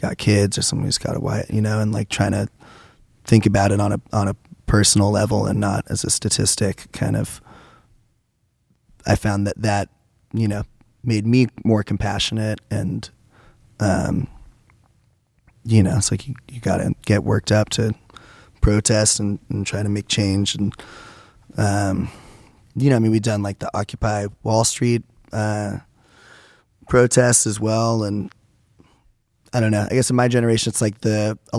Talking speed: 175 wpm